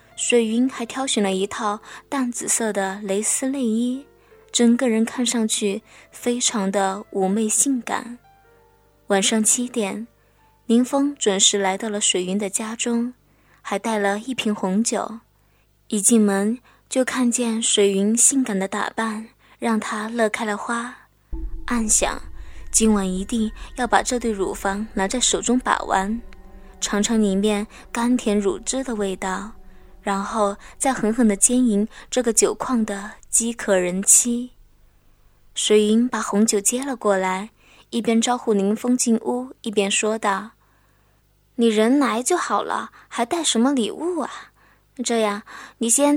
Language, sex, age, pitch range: Chinese, female, 20-39, 200-245 Hz